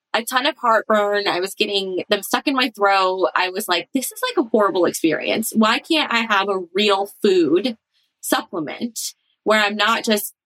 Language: English